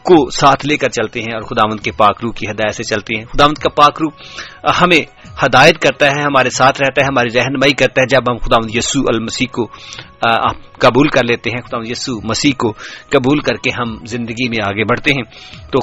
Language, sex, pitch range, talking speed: English, male, 110-135 Hz, 210 wpm